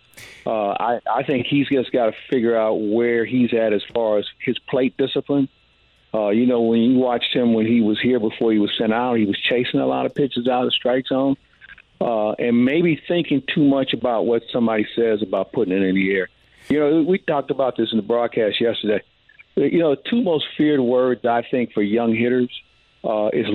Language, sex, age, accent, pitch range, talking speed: English, male, 50-69, American, 110-130 Hz, 220 wpm